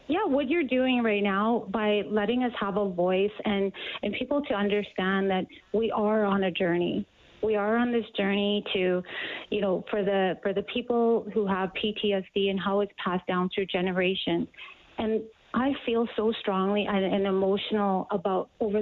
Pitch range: 195-215 Hz